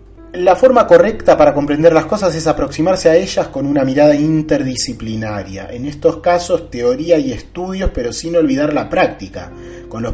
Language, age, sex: Spanish, 30-49, male